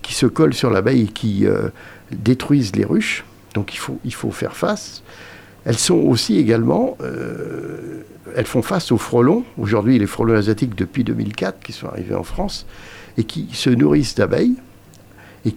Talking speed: 170 wpm